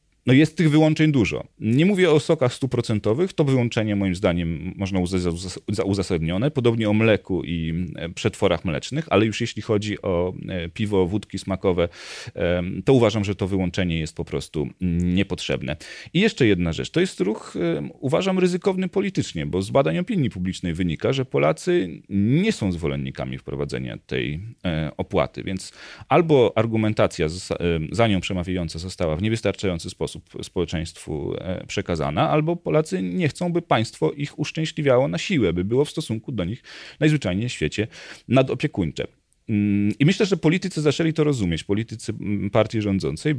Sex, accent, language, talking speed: male, native, Polish, 145 wpm